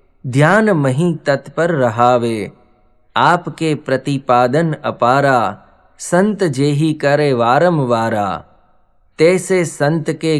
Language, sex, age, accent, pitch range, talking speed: English, male, 20-39, Indian, 115-155 Hz, 85 wpm